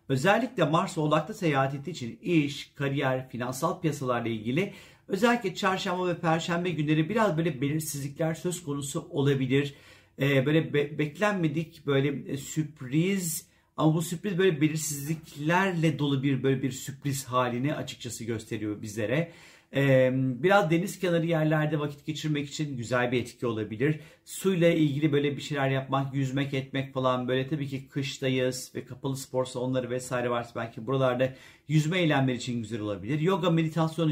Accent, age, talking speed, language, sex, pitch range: native, 50-69, 145 wpm, Turkish, male, 130-165 Hz